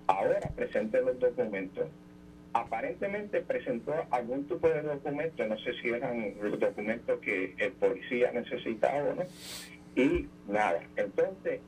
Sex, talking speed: male, 130 wpm